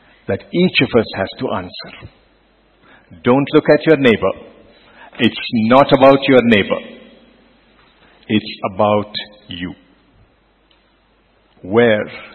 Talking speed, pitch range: 100 wpm, 120-170 Hz